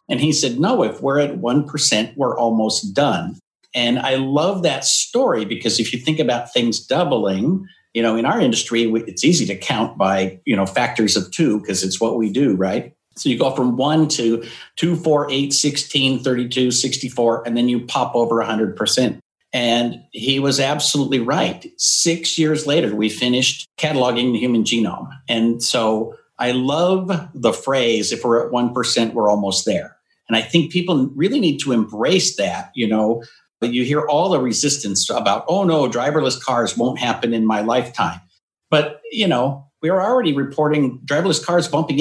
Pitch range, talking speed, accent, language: 115-150 Hz, 180 wpm, American, English